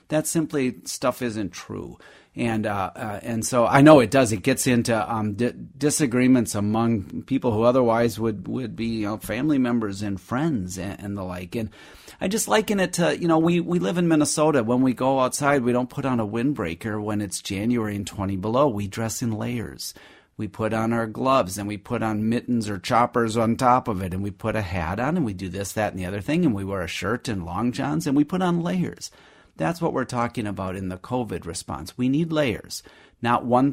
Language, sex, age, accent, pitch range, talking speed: English, male, 40-59, American, 100-130 Hz, 230 wpm